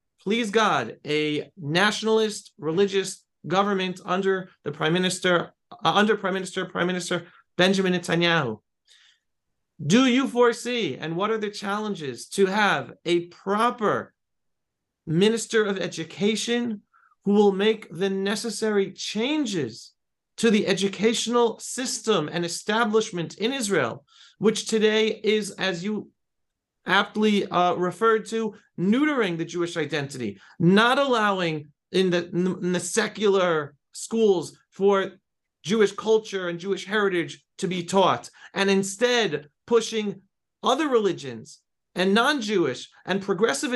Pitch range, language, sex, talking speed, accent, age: 175-220 Hz, English, male, 115 wpm, American, 30-49